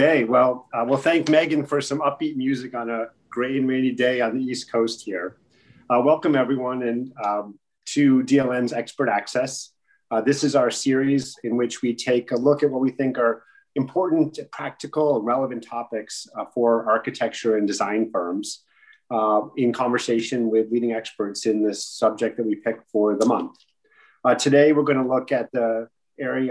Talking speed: 180 wpm